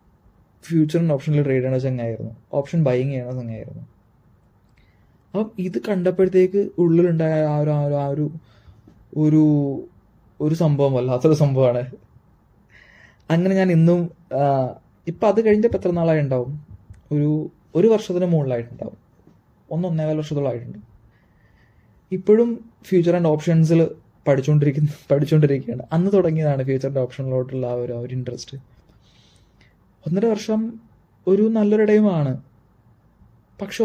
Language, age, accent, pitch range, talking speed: Malayalam, 20-39, native, 125-180 Hz, 105 wpm